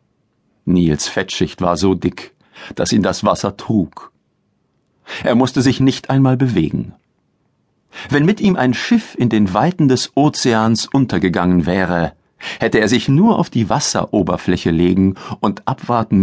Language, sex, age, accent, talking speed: German, male, 50-69, German, 140 wpm